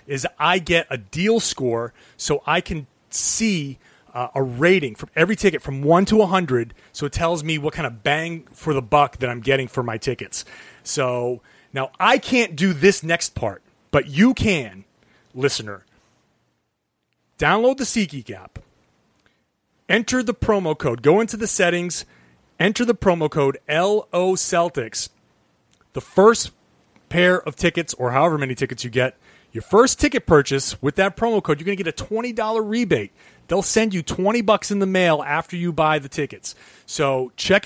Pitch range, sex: 135-195 Hz, male